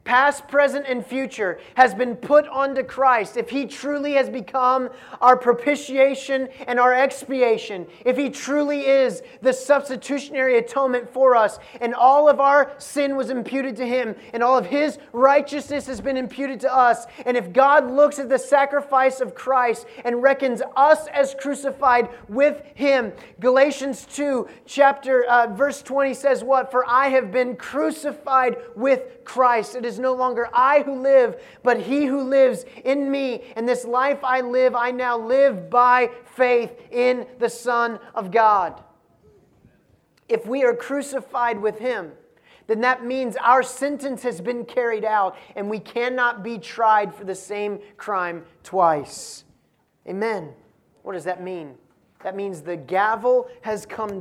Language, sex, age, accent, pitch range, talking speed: English, male, 30-49, American, 235-270 Hz, 155 wpm